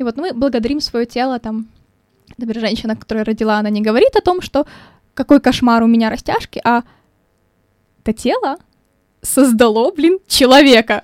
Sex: female